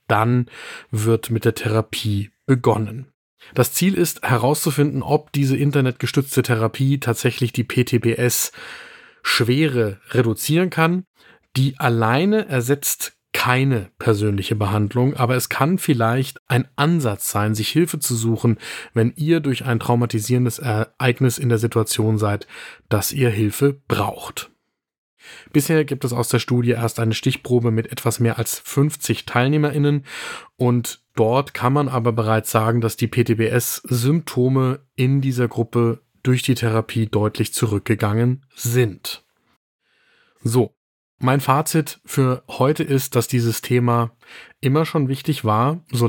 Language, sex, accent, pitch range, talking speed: German, male, German, 115-135 Hz, 130 wpm